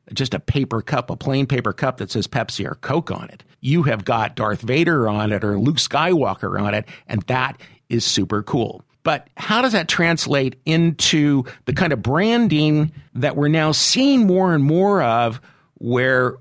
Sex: male